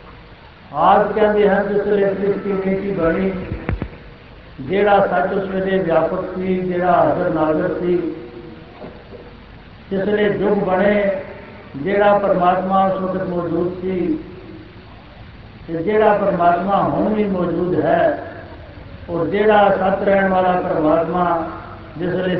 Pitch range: 170-200 Hz